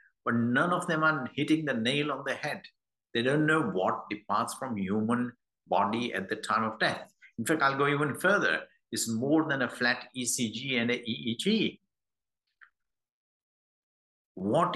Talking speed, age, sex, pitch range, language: 165 wpm, 60-79, male, 120-185 Hz, English